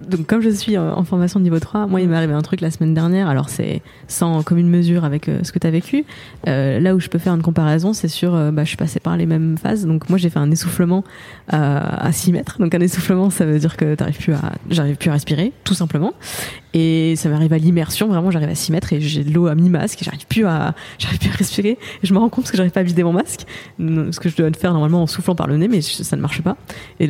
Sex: female